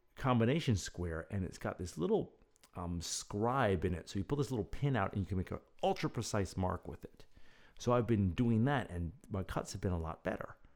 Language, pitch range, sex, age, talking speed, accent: English, 90-115 Hz, male, 50-69, 230 wpm, American